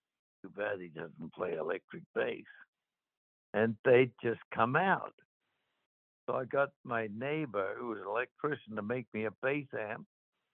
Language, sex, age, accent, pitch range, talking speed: English, male, 60-79, American, 110-130 Hz, 150 wpm